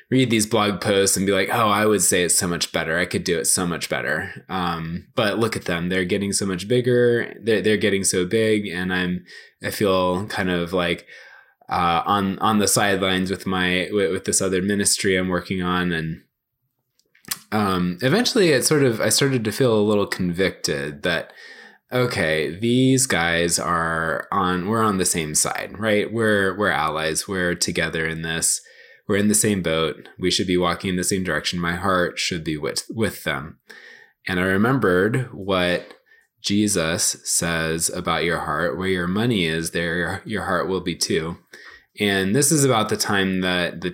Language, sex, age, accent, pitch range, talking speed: English, male, 20-39, American, 85-105 Hz, 190 wpm